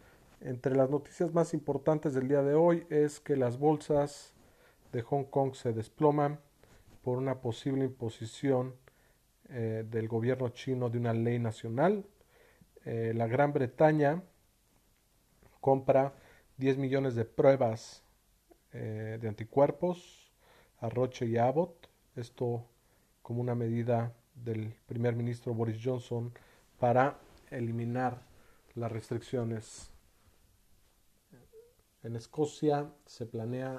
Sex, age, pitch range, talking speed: male, 40-59, 110-135 Hz, 115 wpm